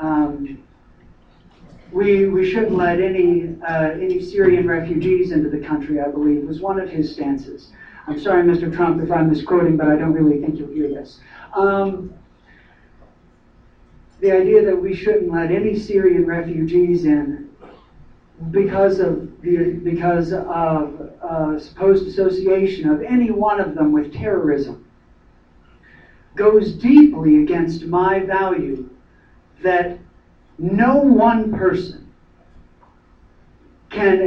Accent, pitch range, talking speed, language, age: American, 160-220 Hz, 125 wpm, English, 60-79